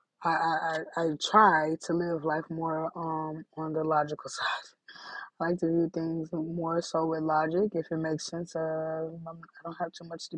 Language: English